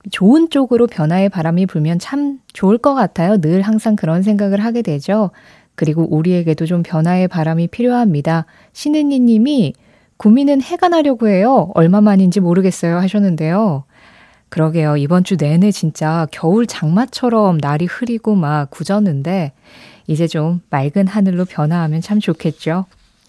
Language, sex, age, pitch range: Korean, female, 20-39, 160-225 Hz